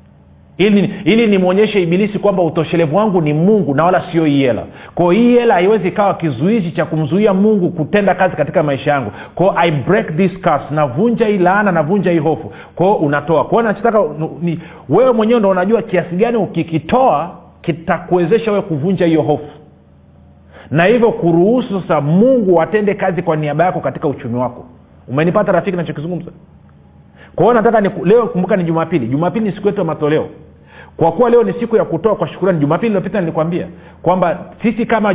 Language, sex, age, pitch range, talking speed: Swahili, male, 40-59, 155-205 Hz, 175 wpm